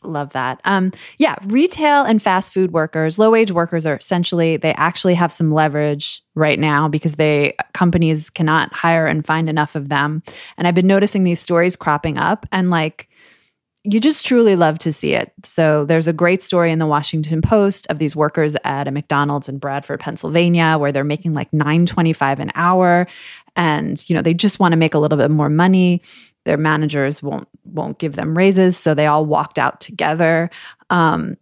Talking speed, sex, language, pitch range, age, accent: 190 wpm, female, English, 155-185 Hz, 20-39, American